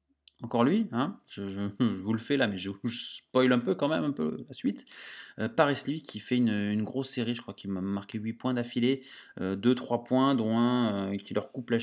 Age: 20-39